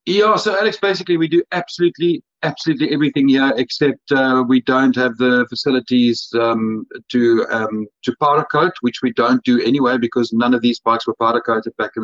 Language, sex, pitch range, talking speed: English, male, 120-160 Hz, 190 wpm